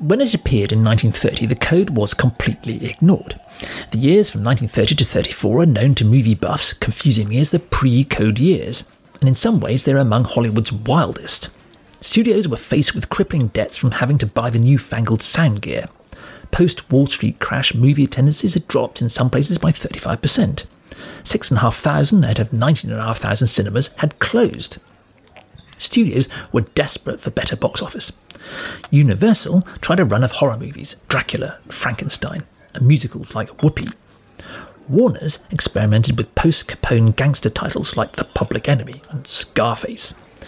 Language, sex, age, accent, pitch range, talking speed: English, male, 40-59, British, 115-150 Hz, 160 wpm